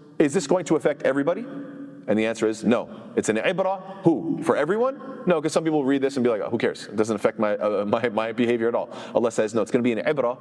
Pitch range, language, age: 105-145 Hz, English, 30-49